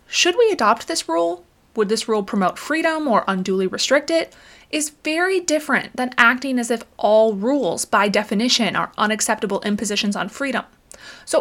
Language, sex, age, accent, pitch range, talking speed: English, female, 30-49, American, 205-295 Hz, 165 wpm